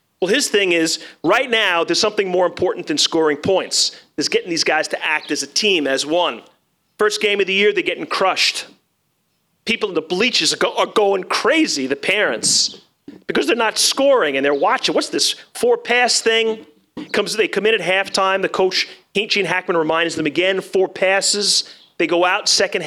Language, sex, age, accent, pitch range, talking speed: English, male, 40-59, American, 165-225 Hz, 185 wpm